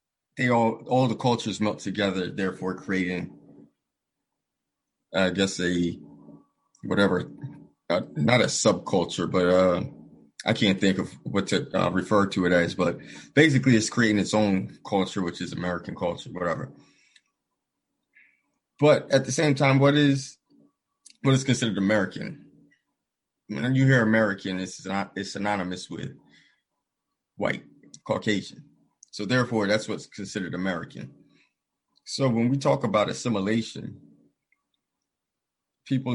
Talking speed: 130 wpm